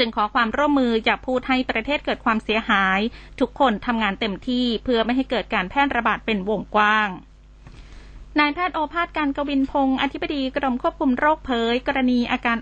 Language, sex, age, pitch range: Thai, female, 20-39, 220-275 Hz